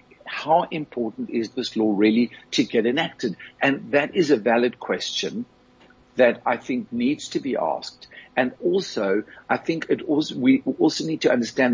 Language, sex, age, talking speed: English, male, 60-79, 170 wpm